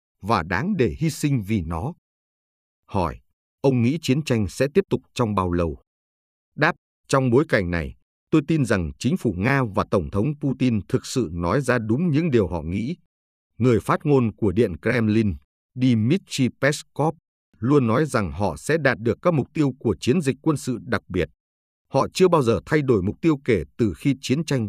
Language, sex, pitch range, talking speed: Vietnamese, male, 95-140 Hz, 195 wpm